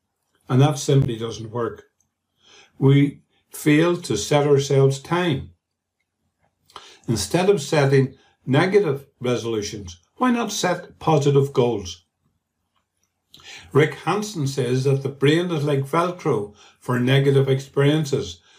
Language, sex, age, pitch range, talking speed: English, male, 50-69, 105-145 Hz, 105 wpm